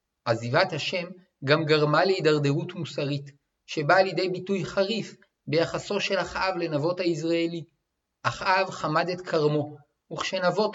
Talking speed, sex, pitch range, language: 110 wpm, male, 150-190 Hz, Hebrew